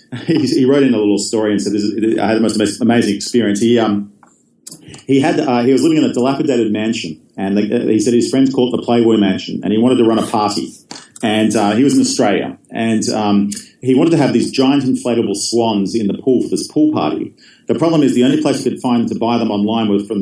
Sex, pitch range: male, 105-120 Hz